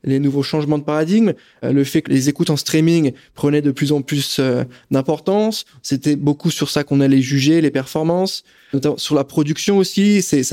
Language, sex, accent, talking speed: French, male, French, 200 wpm